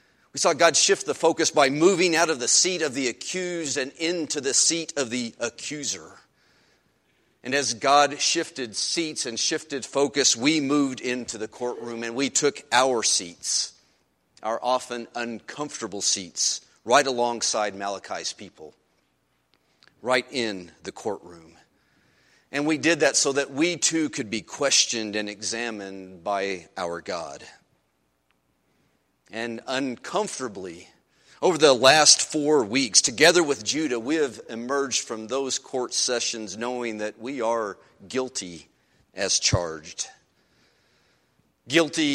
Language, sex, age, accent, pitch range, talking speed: English, male, 40-59, American, 110-145 Hz, 130 wpm